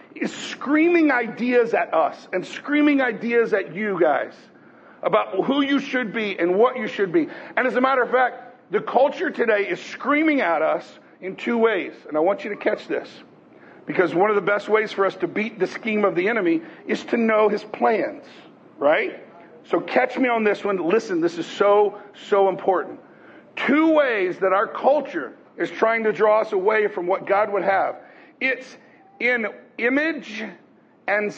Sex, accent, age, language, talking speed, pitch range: male, American, 50-69, English, 185 wpm, 205-270 Hz